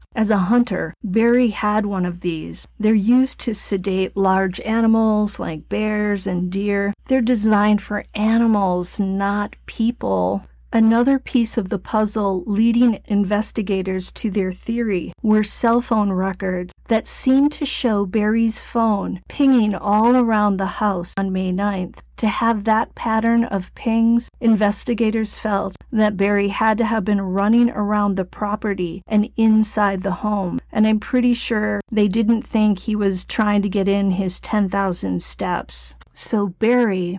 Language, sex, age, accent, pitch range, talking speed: English, female, 40-59, American, 195-225 Hz, 150 wpm